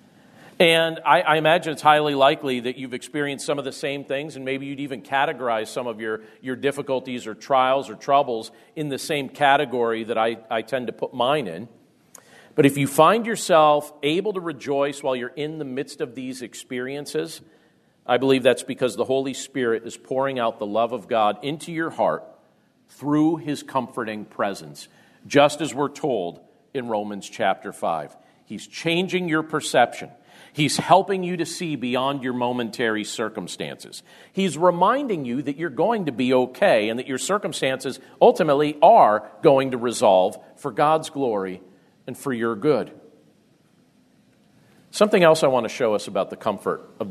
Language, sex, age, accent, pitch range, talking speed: English, male, 50-69, American, 130-175 Hz, 170 wpm